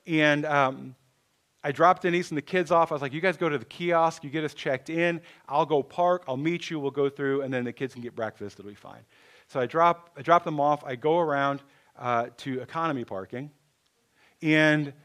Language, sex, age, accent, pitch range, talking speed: English, male, 40-59, American, 130-170 Hz, 225 wpm